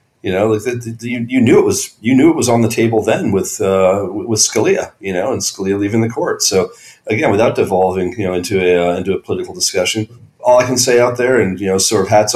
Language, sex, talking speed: English, male, 260 wpm